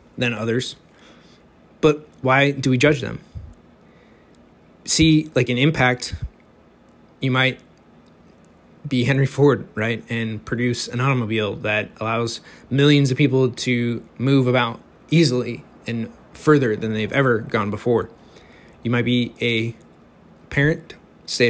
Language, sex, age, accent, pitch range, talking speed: English, male, 20-39, American, 115-140 Hz, 125 wpm